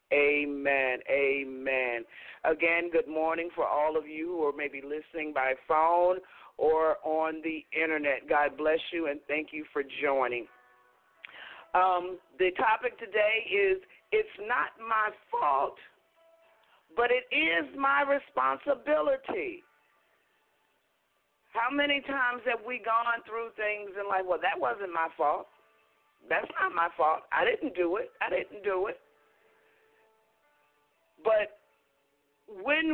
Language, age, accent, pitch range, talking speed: English, 40-59, American, 155-255 Hz, 130 wpm